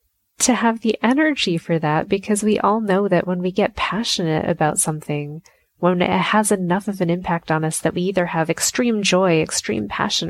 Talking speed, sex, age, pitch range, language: 200 wpm, female, 20-39, 170-220 Hz, English